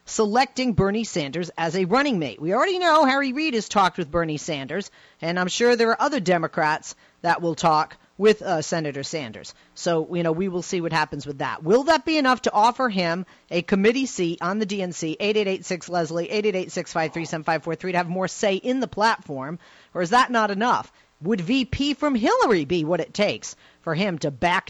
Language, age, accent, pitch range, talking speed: English, 40-59, American, 175-255 Hz, 195 wpm